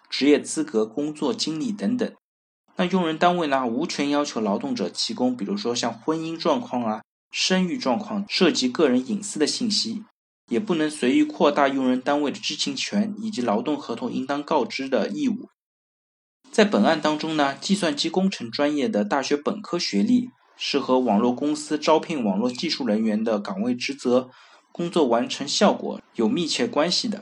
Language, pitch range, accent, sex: Chinese, 145-235 Hz, native, male